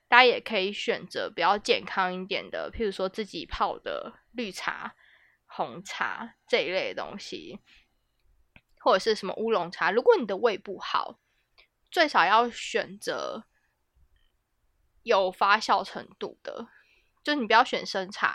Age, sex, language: 20-39, female, Chinese